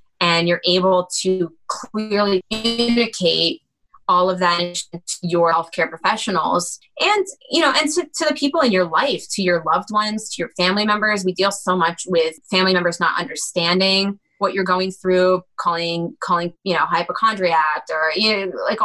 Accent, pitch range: American, 170-205 Hz